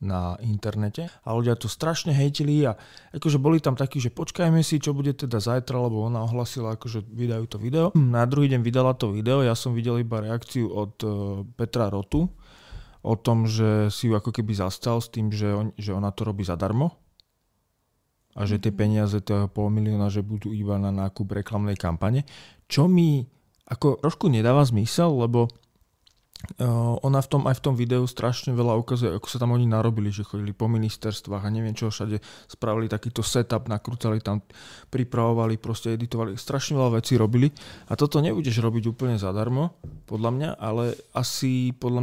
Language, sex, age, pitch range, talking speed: Slovak, male, 30-49, 105-125 Hz, 175 wpm